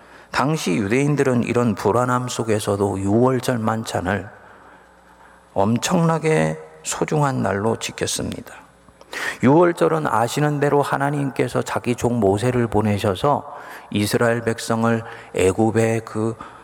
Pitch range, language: 100-135 Hz, Korean